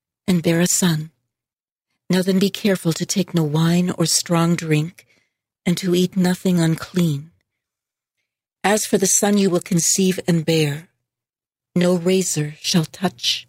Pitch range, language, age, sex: 165-195 Hz, English, 60-79, female